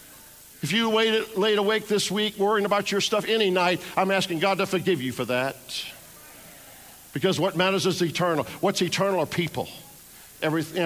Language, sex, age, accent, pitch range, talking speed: English, male, 50-69, American, 130-185 Hz, 170 wpm